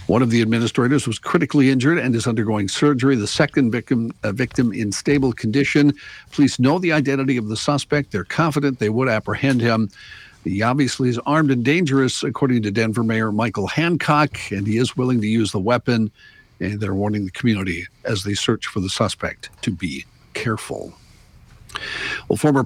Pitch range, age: 110-140 Hz, 50-69